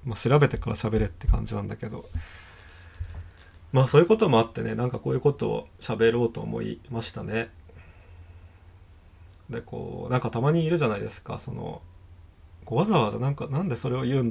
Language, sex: Japanese, male